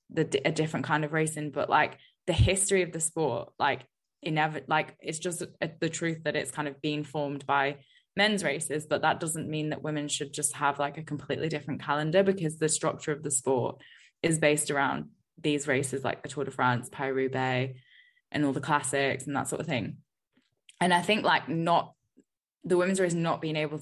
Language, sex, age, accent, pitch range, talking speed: English, female, 10-29, British, 145-165 Hz, 205 wpm